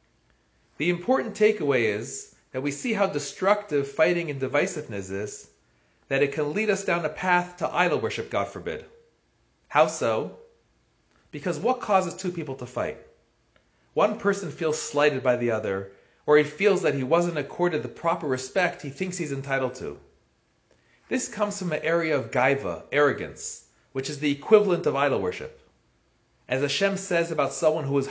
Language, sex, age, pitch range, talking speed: English, male, 30-49, 140-190 Hz, 170 wpm